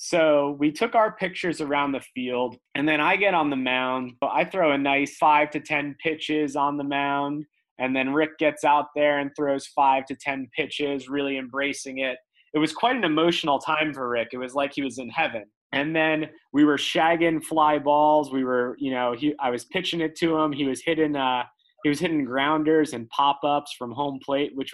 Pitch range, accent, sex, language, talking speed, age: 135-155 Hz, American, male, English, 210 wpm, 20-39